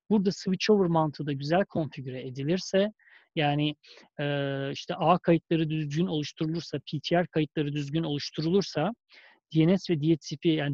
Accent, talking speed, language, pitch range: native, 125 wpm, Turkish, 150-195 Hz